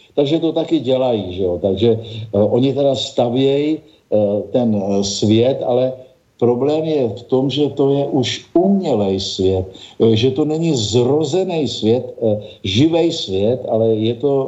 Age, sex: 50-69, male